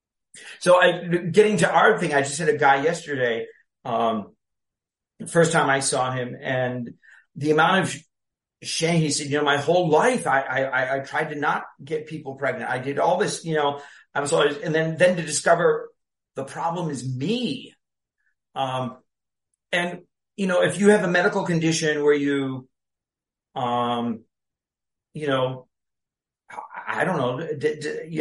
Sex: male